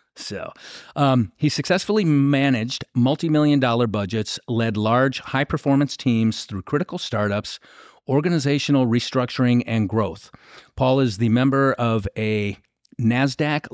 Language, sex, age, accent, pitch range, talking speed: English, male, 50-69, American, 110-135 Hz, 120 wpm